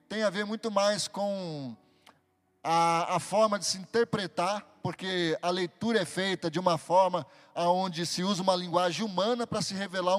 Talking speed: 170 wpm